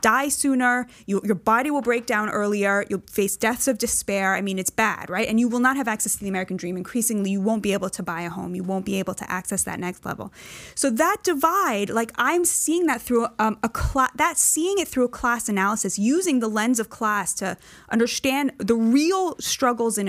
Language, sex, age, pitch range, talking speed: English, female, 20-39, 215-310 Hz, 225 wpm